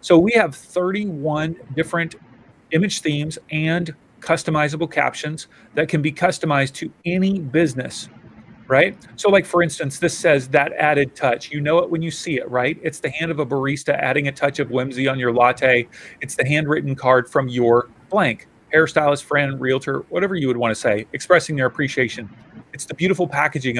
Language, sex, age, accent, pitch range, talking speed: English, male, 40-59, American, 130-165 Hz, 180 wpm